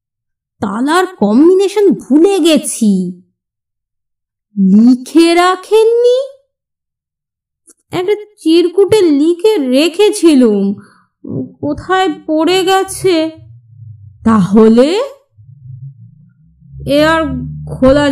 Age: 30-49